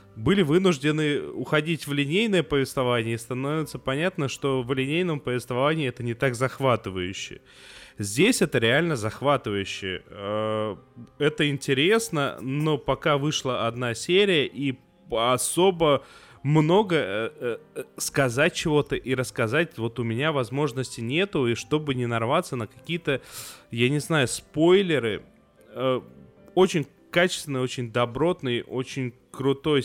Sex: male